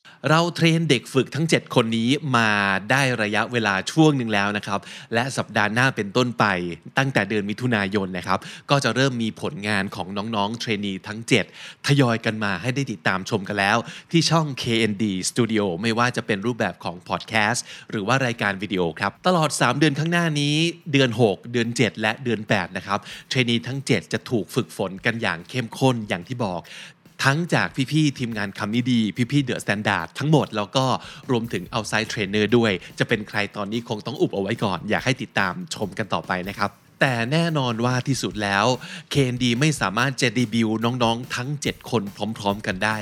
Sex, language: male, Thai